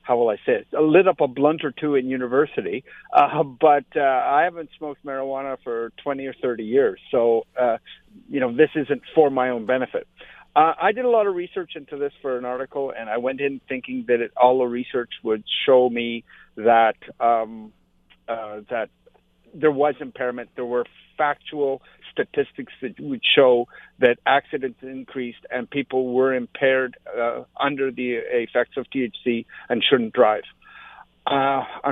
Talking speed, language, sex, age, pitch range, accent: 170 wpm, English, male, 50-69, 120-150 Hz, American